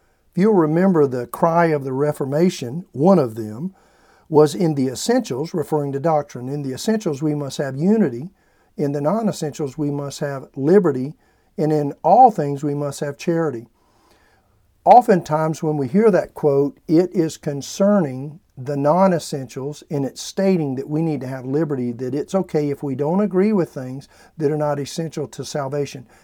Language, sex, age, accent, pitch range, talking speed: English, male, 50-69, American, 145-190 Hz, 170 wpm